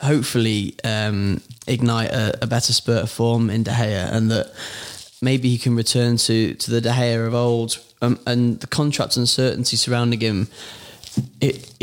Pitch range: 110-120 Hz